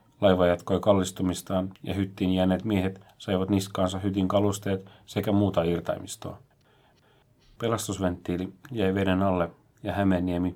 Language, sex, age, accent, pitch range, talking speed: Finnish, male, 40-59, native, 90-100 Hz, 115 wpm